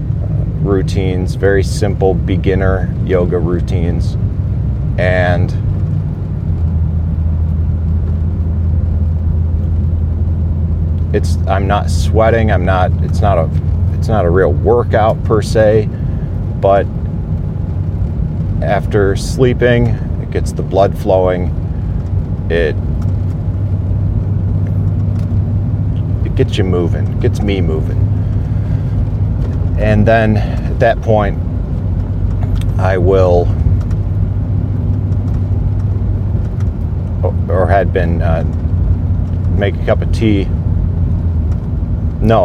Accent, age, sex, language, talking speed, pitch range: American, 40-59, male, English, 80 wpm, 85-100 Hz